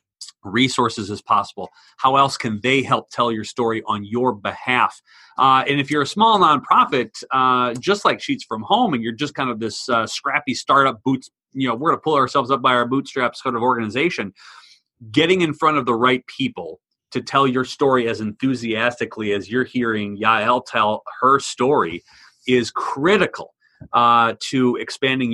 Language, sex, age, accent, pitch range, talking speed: English, male, 30-49, American, 115-140 Hz, 180 wpm